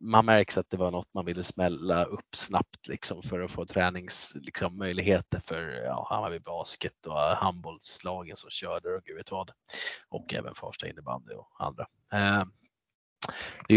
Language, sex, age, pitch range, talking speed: Swedish, male, 20-39, 90-100 Hz, 155 wpm